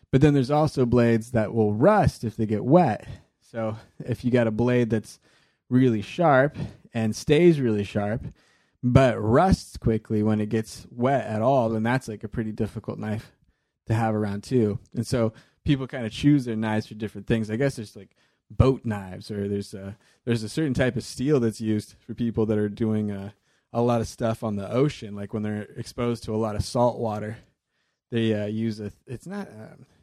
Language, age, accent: English, 20-39, American